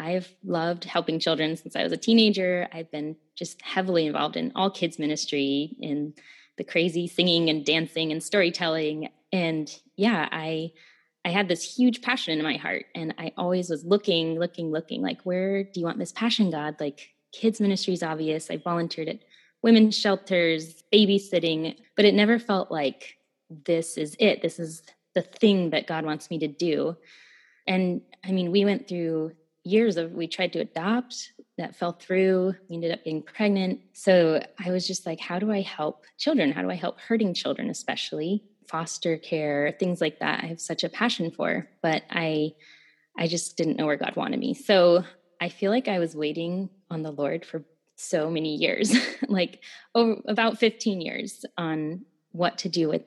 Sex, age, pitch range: female, 20-39, 160-200 Hz